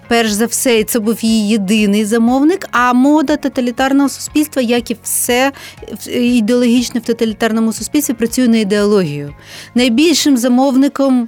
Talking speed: 130 wpm